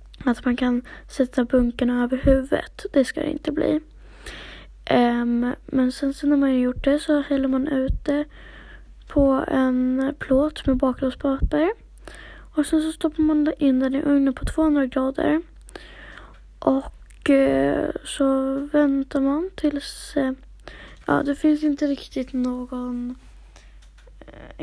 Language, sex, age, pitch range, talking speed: Swedish, female, 20-39, 255-295 Hz, 140 wpm